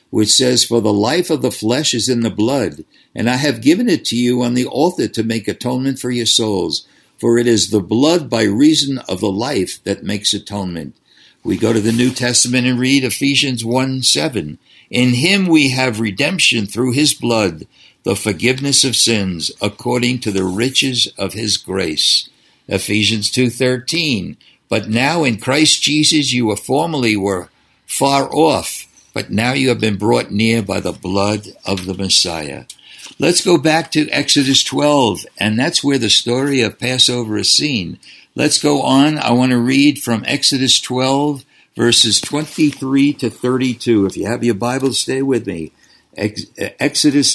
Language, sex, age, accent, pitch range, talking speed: English, male, 60-79, American, 110-140 Hz, 170 wpm